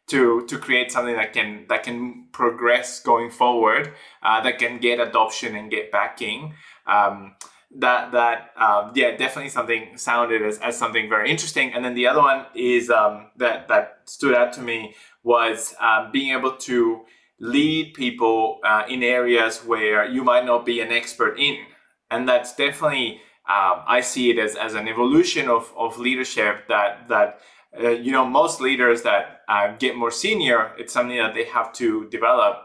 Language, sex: English, male